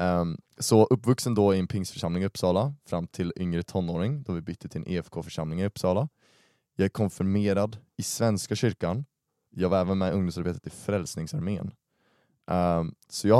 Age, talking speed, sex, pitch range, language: 20-39, 160 wpm, male, 85-100 Hz, Swedish